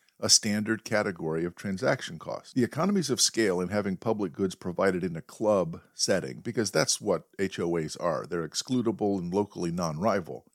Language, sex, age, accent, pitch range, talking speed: English, male, 50-69, American, 100-135 Hz, 165 wpm